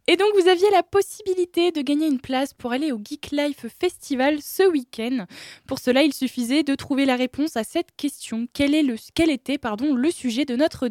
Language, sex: French, female